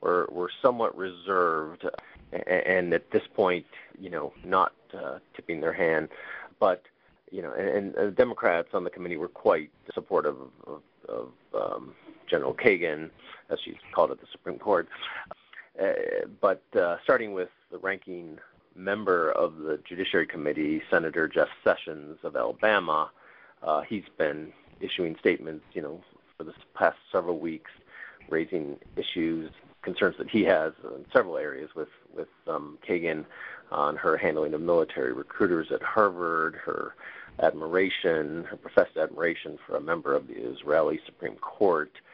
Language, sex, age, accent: English, male, 40-59, American